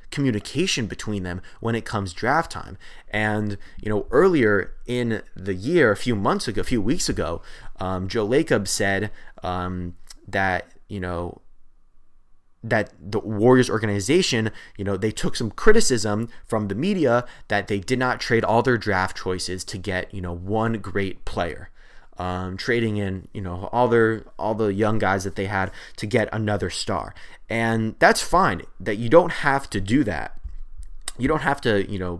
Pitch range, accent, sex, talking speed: 95-115 Hz, American, male, 175 wpm